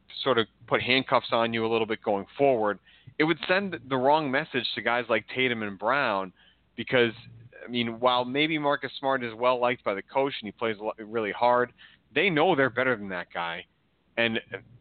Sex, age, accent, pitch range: male, 30-49, American, 110-140 Hz